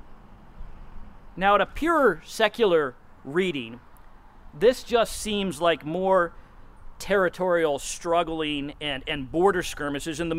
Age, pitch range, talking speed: 40-59, 125-190 Hz, 110 wpm